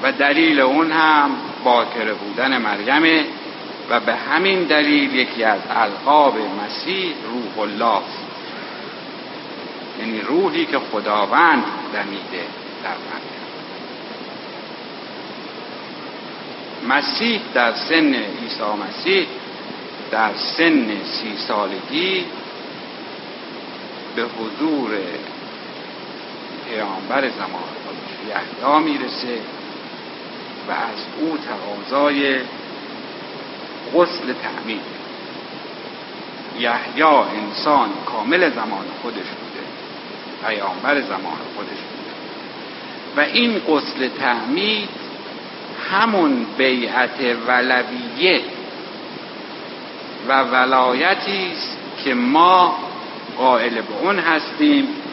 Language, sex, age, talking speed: Persian, male, 60-79, 75 wpm